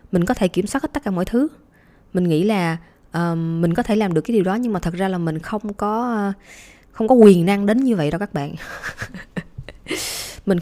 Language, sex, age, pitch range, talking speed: Vietnamese, female, 20-39, 160-215 Hz, 230 wpm